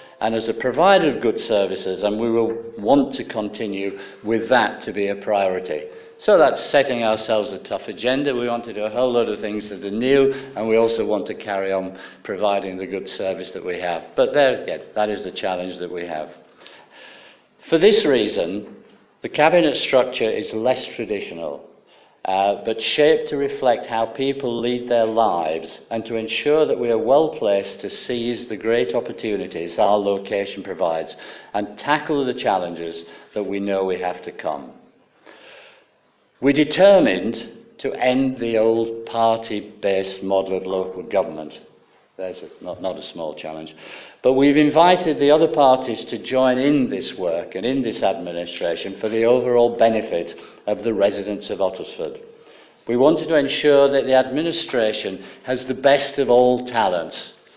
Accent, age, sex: British, 50-69, male